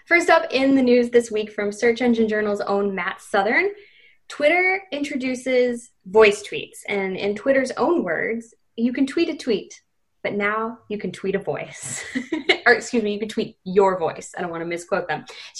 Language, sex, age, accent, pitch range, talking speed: English, female, 10-29, American, 190-240 Hz, 190 wpm